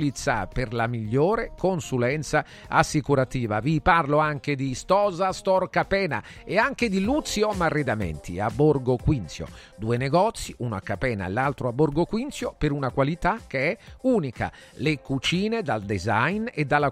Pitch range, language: 125-185 Hz, Italian